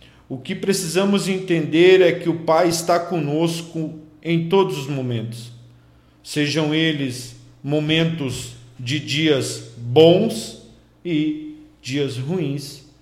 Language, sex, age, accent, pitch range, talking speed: Portuguese, male, 50-69, Brazilian, 115-175 Hz, 105 wpm